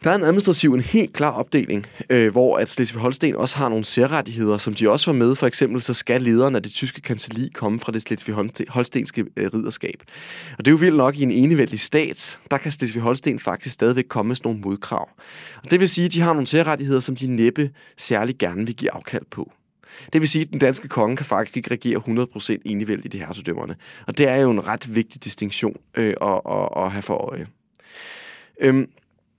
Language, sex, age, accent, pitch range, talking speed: Danish, male, 20-39, native, 115-145 Hz, 215 wpm